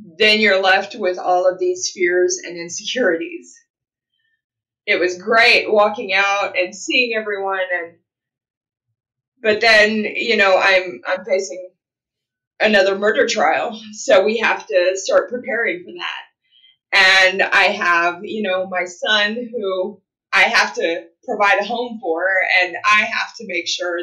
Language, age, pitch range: English, 20-39, 175-215 Hz